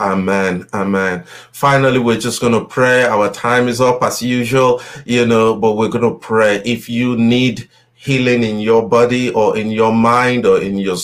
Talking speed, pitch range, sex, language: 190 wpm, 105-125 Hz, male, English